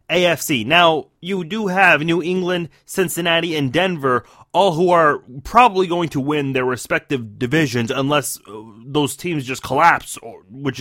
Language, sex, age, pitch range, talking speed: English, male, 30-49, 145-200 Hz, 145 wpm